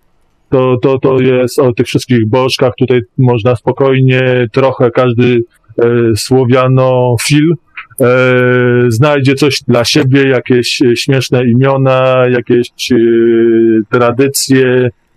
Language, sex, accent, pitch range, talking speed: Polish, male, native, 115-135 Hz, 105 wpm